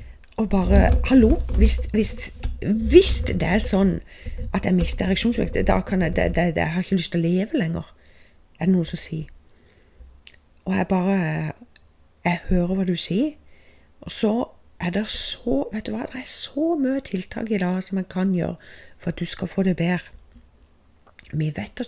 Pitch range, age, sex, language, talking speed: 160-205 Hz, 40-59, female, English, 165 wpm